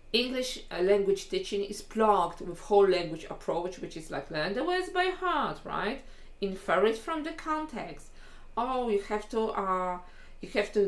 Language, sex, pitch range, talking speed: English, female, 185-215 Hz, 170 wpm